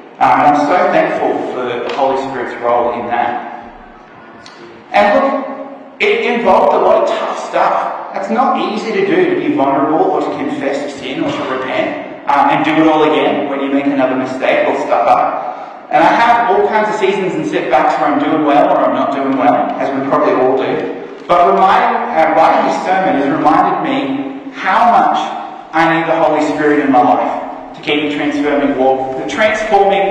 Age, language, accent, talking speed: 30-49, English, Australian, 195 wpm